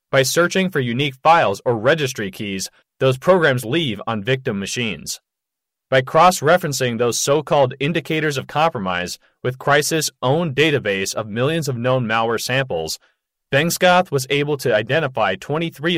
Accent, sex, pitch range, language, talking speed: American, male, 125-155 Hz, English, 140 wpm